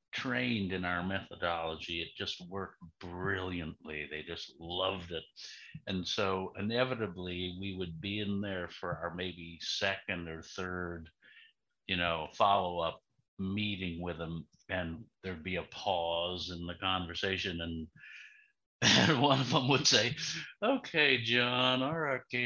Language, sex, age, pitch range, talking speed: English, male, 50-69, 95-135 Hz, 135 wpm